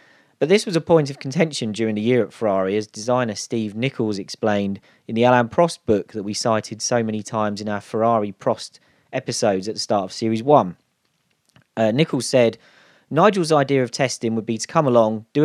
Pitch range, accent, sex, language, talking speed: 105-135 Hz, British, male, English, 200 wpm